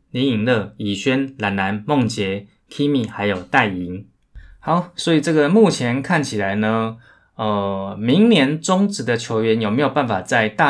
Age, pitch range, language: 20-39, 100-135 Hz, Chinese